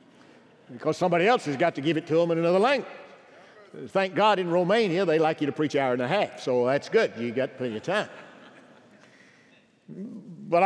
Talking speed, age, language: 205 wpm, 50-69, English